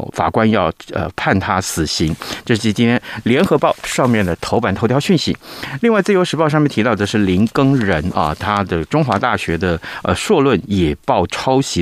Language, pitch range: Chinese, 95-130 Hz